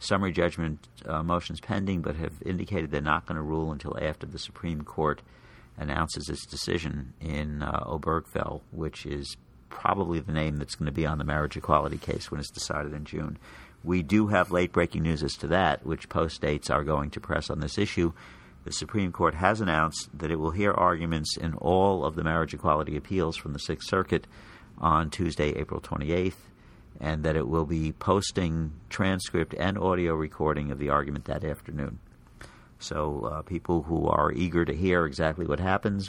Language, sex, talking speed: English, male, 185 wpm